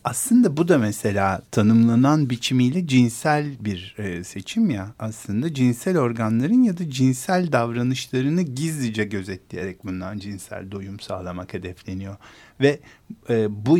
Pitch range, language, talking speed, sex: 105-140 Hz, Turkish, 115 wpm, male